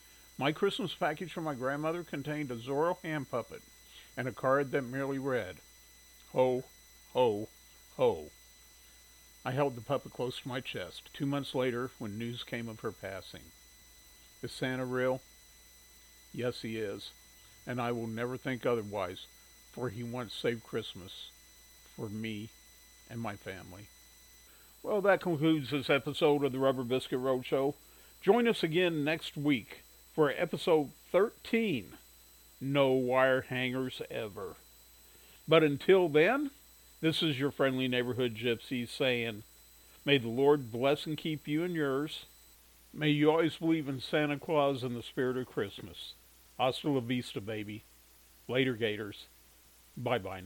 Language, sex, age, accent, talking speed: English, male, 50-69, American, 140 wpm